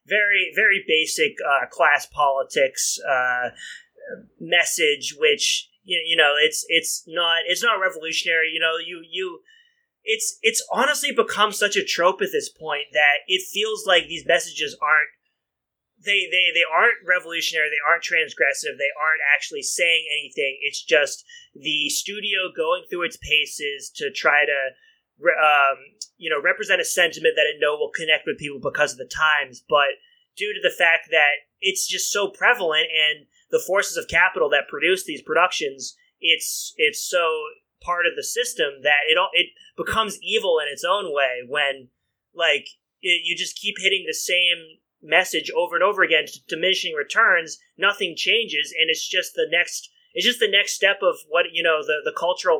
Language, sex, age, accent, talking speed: English, male, 30-49, American, 170 wpm